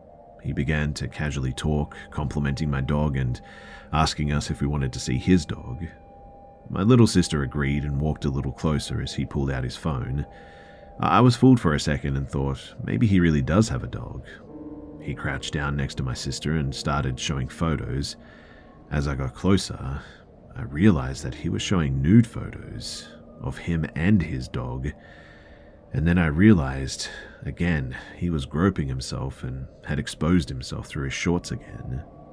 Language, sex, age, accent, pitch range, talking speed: English, male, 30-49, Australian, 70-85 Hz, 175 wpm